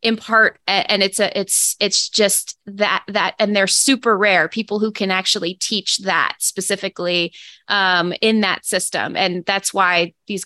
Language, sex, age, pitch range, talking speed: English, female, 20-39, 185-215 Hz, 165 wpm